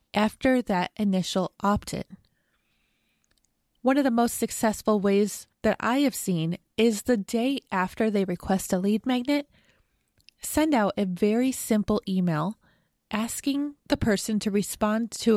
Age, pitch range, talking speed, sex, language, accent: 20-39, 195-240 Hz, 140 wpm, female, English, American